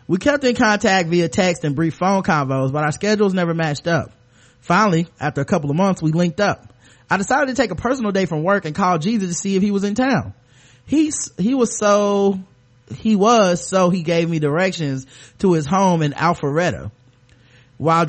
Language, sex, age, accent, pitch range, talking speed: English, male, 30-49, American, 145-195 Hz, 200 wpm